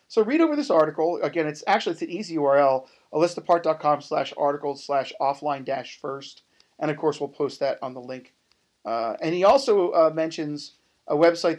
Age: 40-59